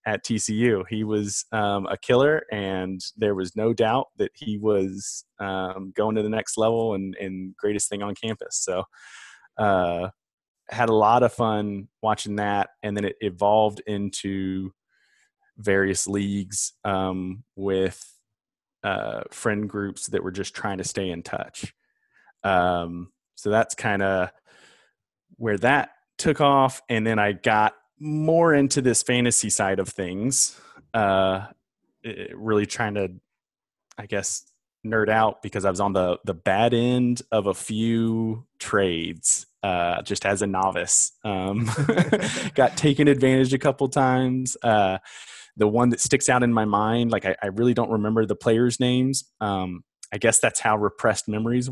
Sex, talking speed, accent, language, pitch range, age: male, 155 wpm, American, English, 95-120 Hz, 20-39